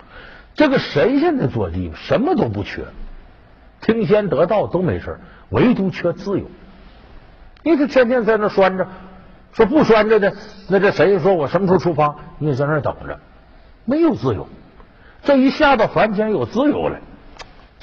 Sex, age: male, 60-79